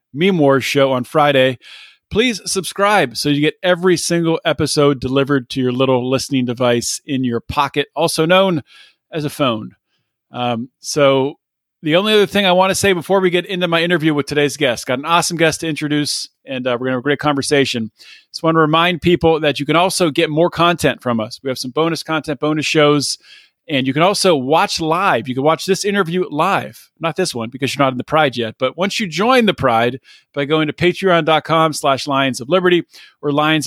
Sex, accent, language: male, American, English